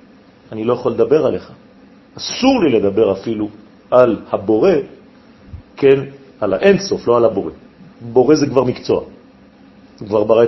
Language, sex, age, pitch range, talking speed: French, male, 40-59, 120-205 Hz, 125 wpm